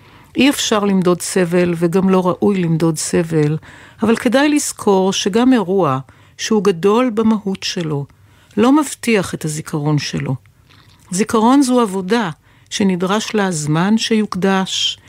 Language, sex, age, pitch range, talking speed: Hebrew, female, 60-79, 160-230 Hz, 120 wpm